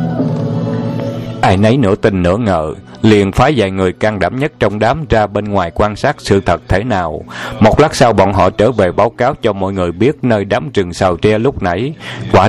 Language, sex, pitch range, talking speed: Vietnamese, male, 95-125 Hz, 215 wpm